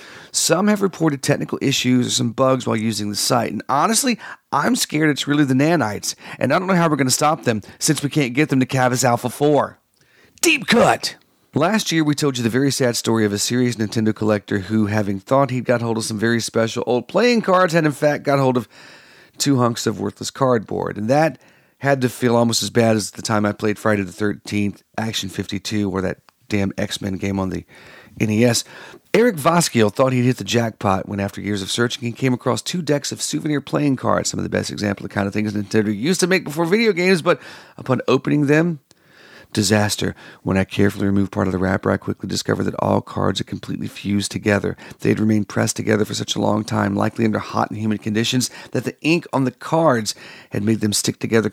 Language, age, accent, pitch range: English, 40-59, American, 105-140 Hz